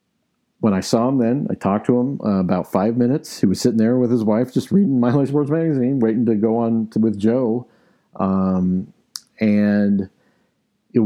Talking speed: 195 wpm